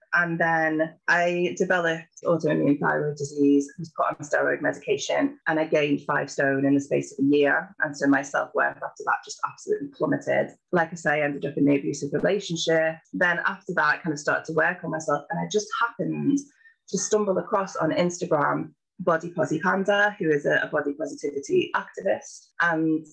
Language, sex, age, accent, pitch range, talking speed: English, female, 30-49, British, 165-210 Hz, 185 wpm